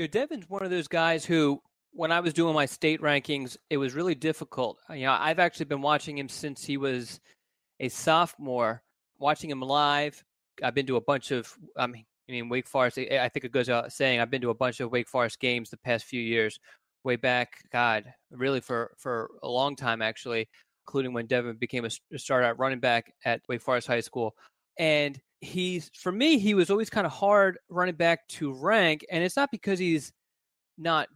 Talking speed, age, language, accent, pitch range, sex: 210 wpm, 20-39, English, American, 130-175 Hz, male